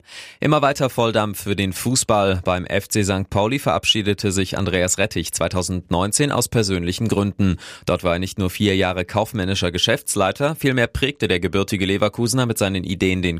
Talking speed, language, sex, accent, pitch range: 160 wpm, German, male, German, 90-110 Hz